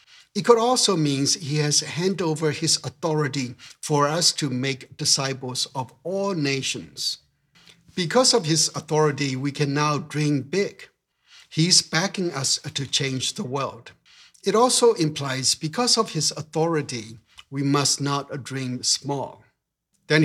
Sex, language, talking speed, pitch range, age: male, English, 140 wpm, 135-160 Hz, 60-79